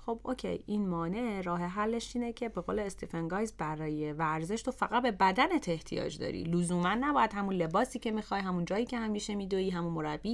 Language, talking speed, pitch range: Persian, 185 wpm, 180-255 Hz